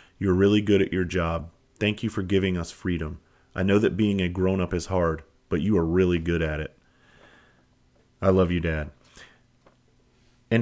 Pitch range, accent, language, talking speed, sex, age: 90-105 Hz, American, English, 180 wpm, male, 30-49